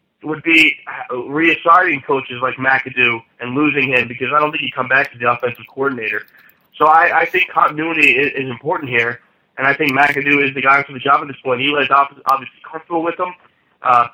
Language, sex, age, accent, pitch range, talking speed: English, male, 30-49, American, 130-155 Hz, 205 wpm